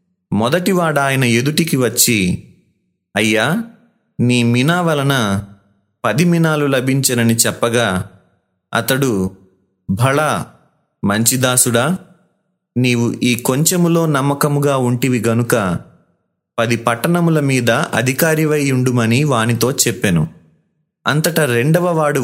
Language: Telugu